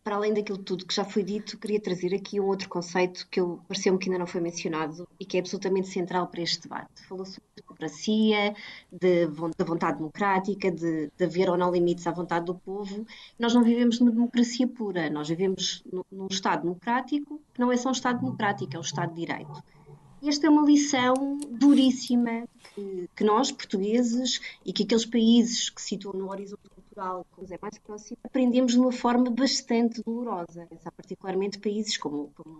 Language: Portuguese